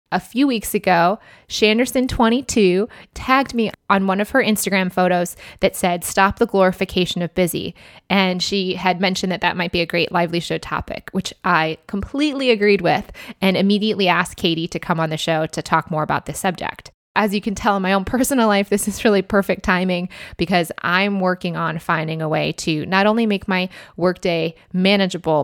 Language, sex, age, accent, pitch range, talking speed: English, female, 20-39, American, 170-205 Hz, 190 wpm